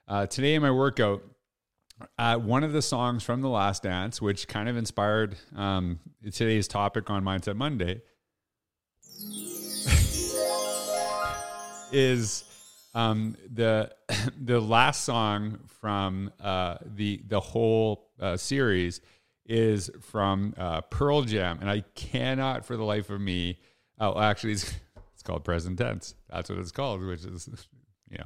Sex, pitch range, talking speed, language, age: male, 95-115 Hz, 135 wpm, English, 40-59